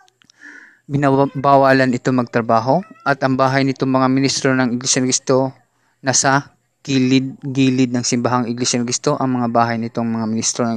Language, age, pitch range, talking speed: English, 20-39, 125-140 Hz, 150 wpm